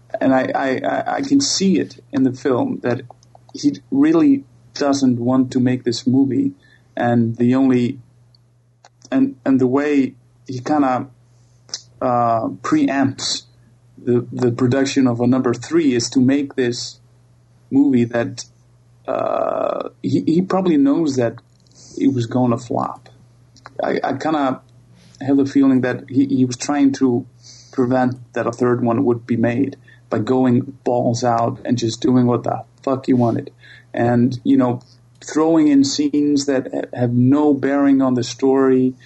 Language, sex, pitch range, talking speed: English, male, 120-135 Hz, 160 wpm